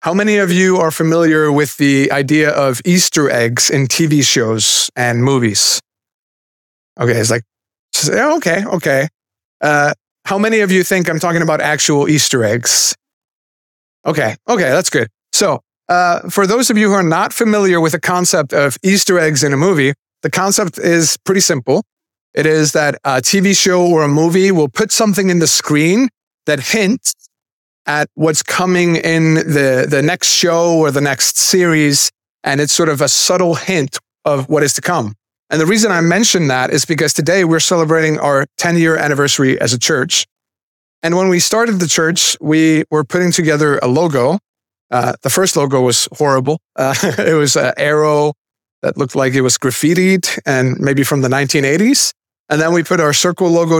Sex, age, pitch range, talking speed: male, 30-49, 140-180 Hz, 180 wpm